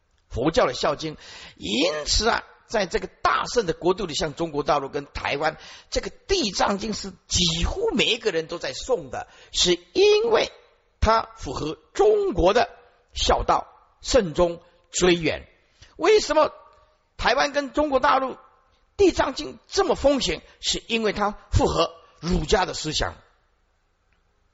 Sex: male